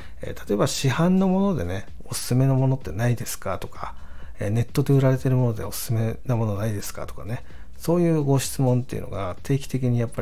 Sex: male